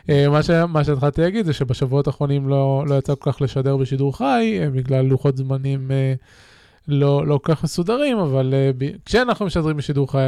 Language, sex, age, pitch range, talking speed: Hebrew, male, 20-39, 135-175 Hz, 160 wpm